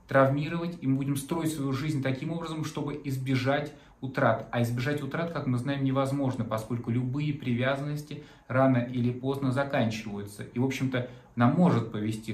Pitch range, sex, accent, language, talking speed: 125-160 Hz, male, native, Russian, 155 wpm